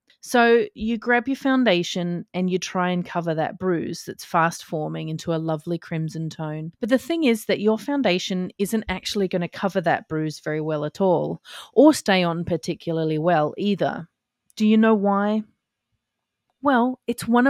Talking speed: 170 wpm